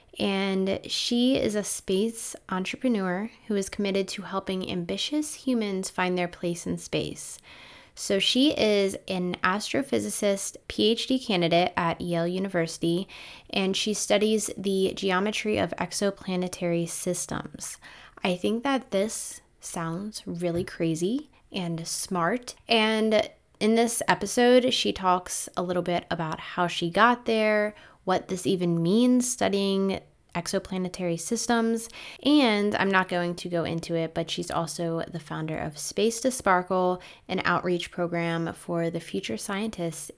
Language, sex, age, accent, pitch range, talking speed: English, female, 10-29, American, 175-215 Hz, 135 wpm